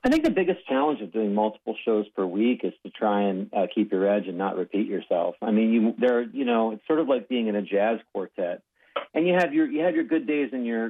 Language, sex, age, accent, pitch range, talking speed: English, male, 50-69, American, 100-110 Hz, 270 wpm